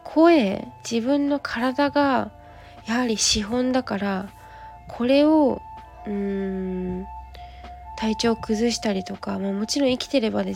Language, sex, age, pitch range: Japanese, female, 20-39, 195-255 Hz